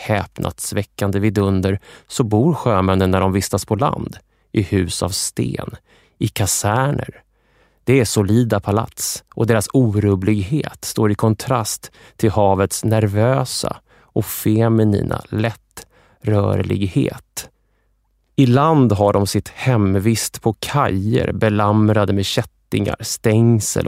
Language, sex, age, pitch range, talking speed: English, male, 20-39, 100-125 Hz, 120 wpm